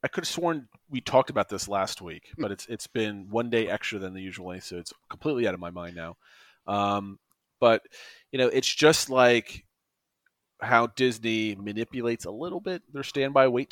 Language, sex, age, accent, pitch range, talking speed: English, male, 30-49, American, 105-130 Hz, 190 wpm